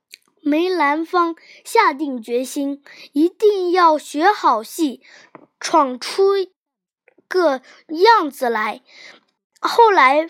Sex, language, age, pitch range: female, Chinese, 10-29, 280-385 Hz